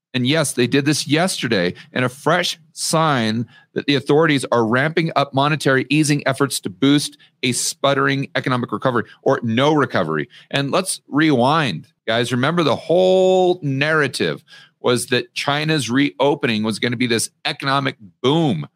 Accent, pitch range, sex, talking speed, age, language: American, 120-155 Hz, male, 150 wpm, 40-59, English